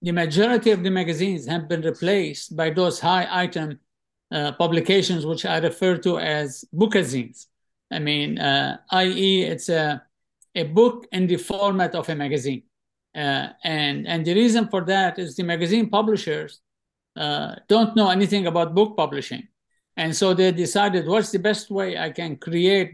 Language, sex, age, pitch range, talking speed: English, male, 50-69, 160-195 Hz, 160 wpm